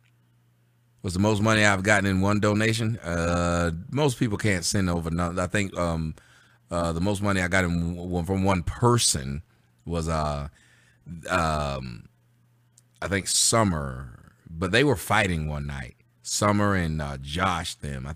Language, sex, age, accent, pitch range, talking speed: English, male, 30-49, American, 75-105 Hz, 160 wpm